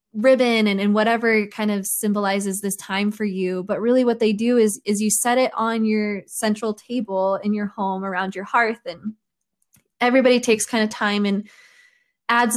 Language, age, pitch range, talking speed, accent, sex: English, 20-39, 190-220 Hz, 185 wpm, American, female